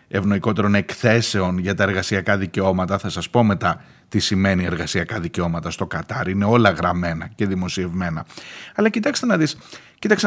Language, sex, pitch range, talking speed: Greek, male, 95-130 Hz, 135 wpm